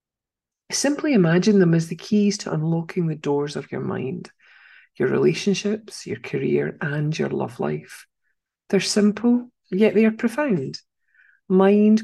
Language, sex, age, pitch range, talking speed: English, female, 40-59, 175-225 Hz, 140 wpm